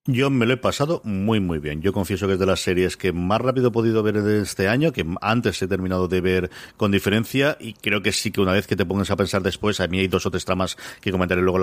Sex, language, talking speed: male, Spanish, 290 wpm